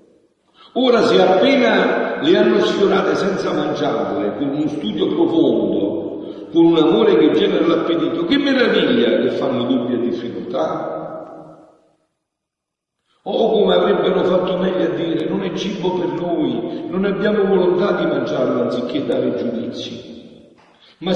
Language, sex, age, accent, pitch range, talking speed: Italian, male, 50-69, native, 185-285 Hz, 135 wpm